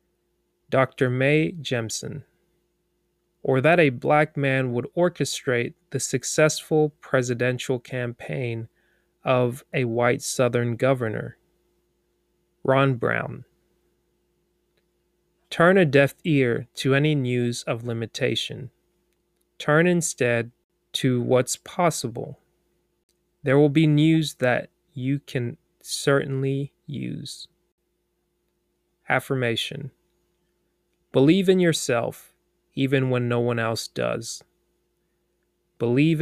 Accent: American